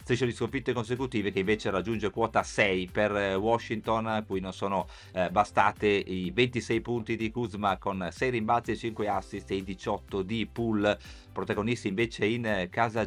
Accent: native